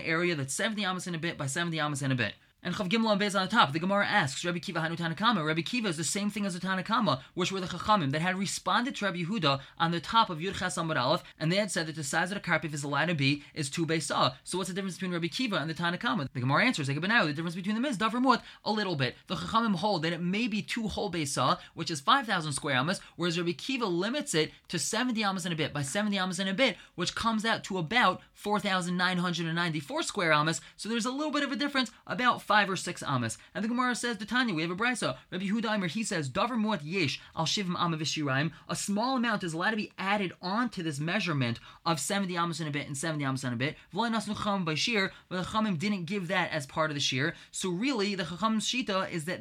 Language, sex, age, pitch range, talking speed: English, male, 20-39, 160-210 Hz, 255 wpm